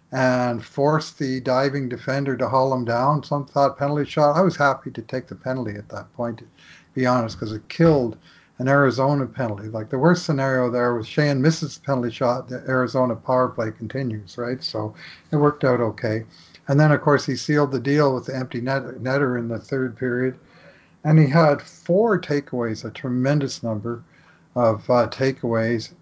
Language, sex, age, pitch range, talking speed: English, male, 50-69, 120-140 Hz, 185 wpm